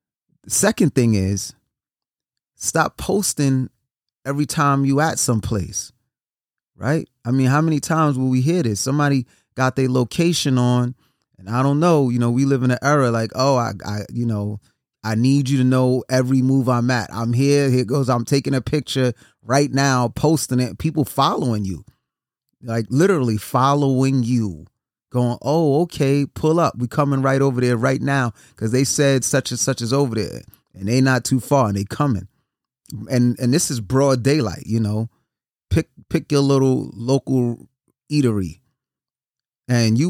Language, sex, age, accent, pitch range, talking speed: English, male, 30-49, American, 110-135 Hz, 170 wpm